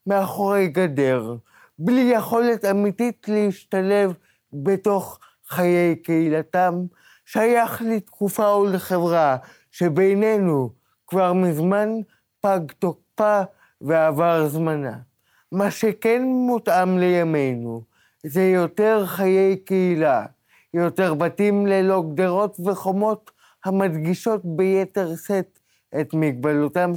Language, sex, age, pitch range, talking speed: Hebrew, male, 20-39, 160-205 Hz, 80 wpm